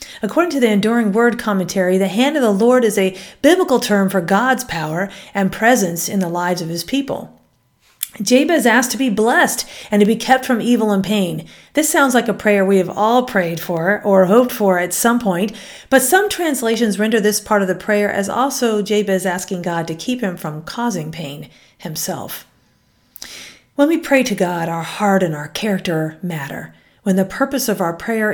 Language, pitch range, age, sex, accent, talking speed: English, 185-240 Hz, 40-59, female, American, 195 wpm